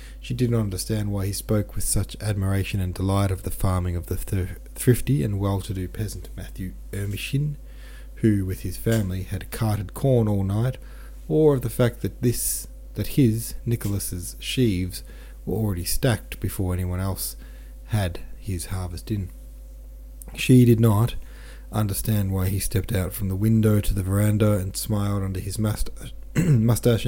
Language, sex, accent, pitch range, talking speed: English, male, Australian, 90-105 Hz, 155 wpm